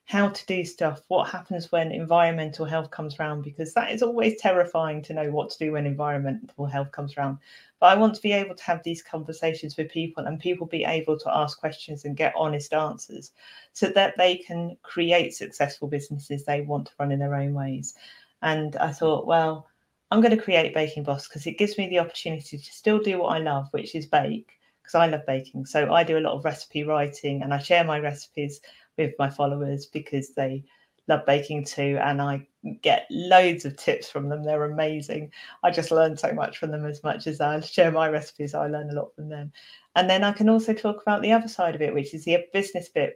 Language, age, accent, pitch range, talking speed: English, 40-59, British, 150-185 Hz, 220 wpm